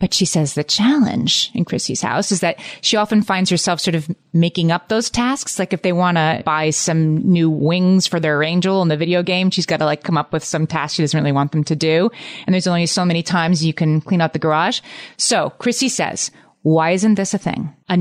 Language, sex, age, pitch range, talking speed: English, female, 30-49, 160-200 Hz, 245 wpm